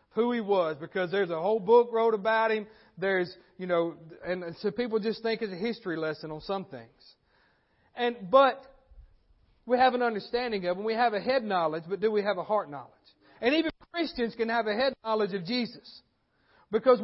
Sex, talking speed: male, 200 wpm